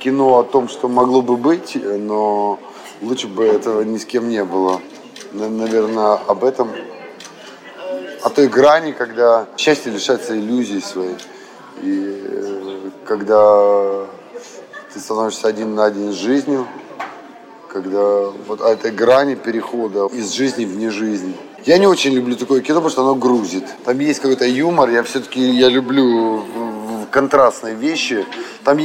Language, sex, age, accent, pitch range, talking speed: Russian, male, 20-39, native, 105-130 Hz, 135 wpm